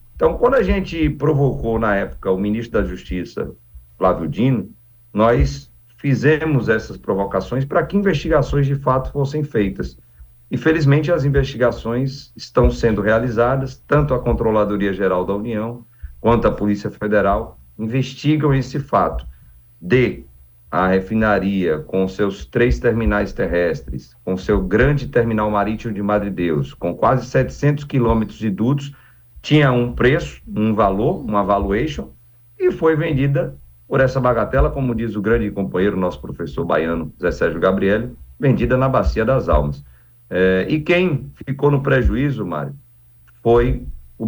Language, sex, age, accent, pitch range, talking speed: Portuguese, male, 50-69, Brazilian, 95-135 Hz, 140 wpm